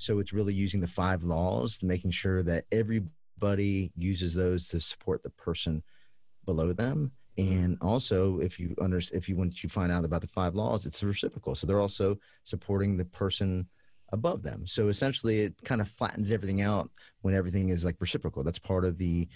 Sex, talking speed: male, 195 wpm